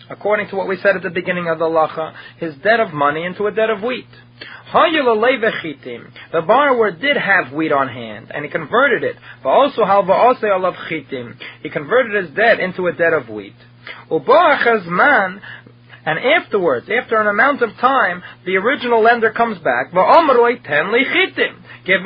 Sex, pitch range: male, 165-245 Hz